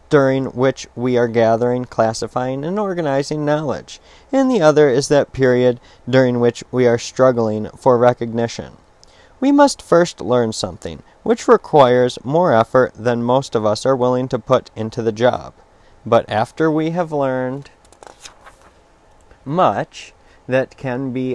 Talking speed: 145 wpm